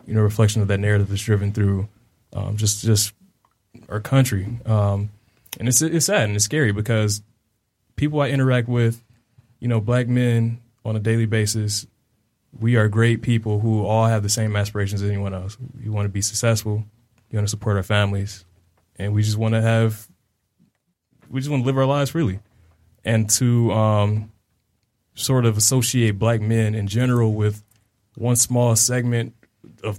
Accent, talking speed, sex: American, 180 wpm, male